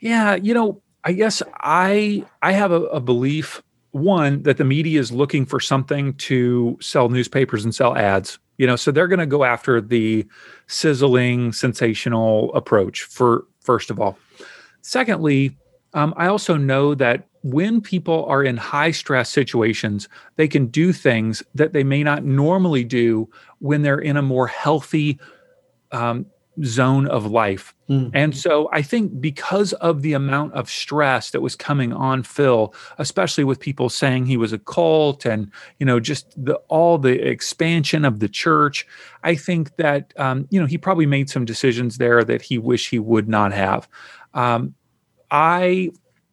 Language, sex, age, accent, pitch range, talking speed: English, male, 40-59, American, 125-160 Hz, 165 wpm